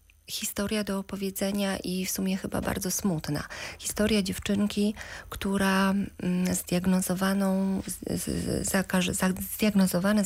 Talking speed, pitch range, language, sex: 75 wpm, 150-195 Hz, Polish, female